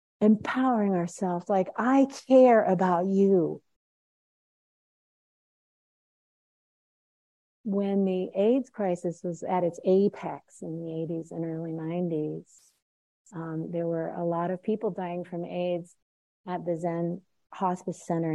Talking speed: 120 wpm